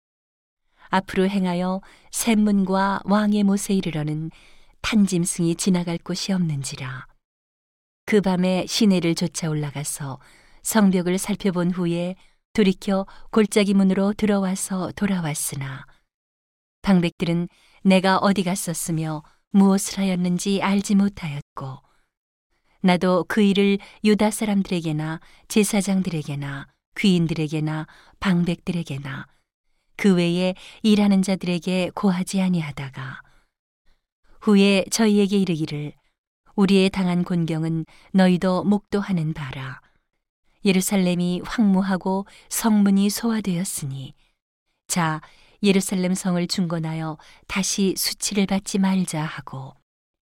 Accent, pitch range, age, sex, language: native, 165-200 Hz, 40-59, female, Korean